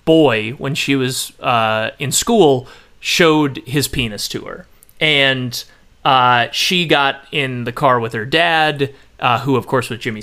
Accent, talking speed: American, 165 wpm